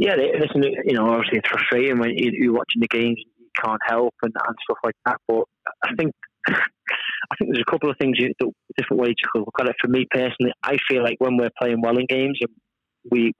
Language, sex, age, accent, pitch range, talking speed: English, male, 20-39, British, 110-120 Hz, 235 wpm